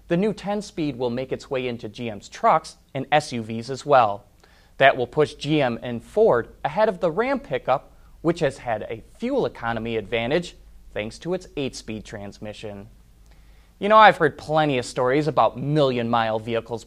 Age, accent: 30-49, American